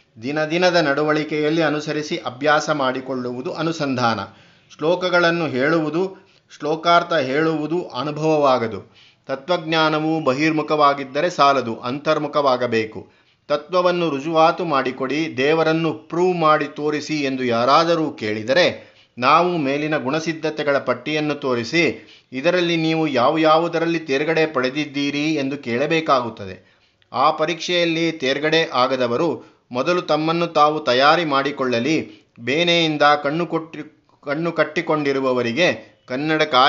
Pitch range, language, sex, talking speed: 130-160 Hz, Kannada, male, 90 wpm